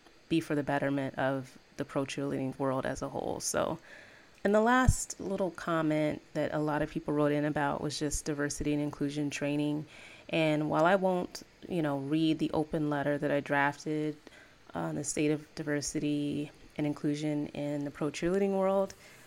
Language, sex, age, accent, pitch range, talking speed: English, female, 20-39, American, 150-170 Hz, 180 wpm